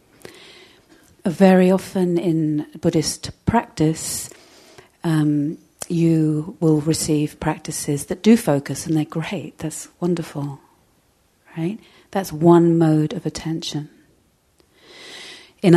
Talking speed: 95 wpm